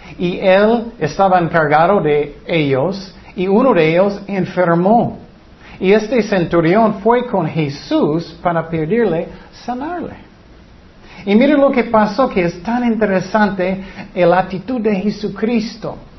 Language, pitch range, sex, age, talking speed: Spanish, 160-220 Hz, male, 50-69, 120 wpm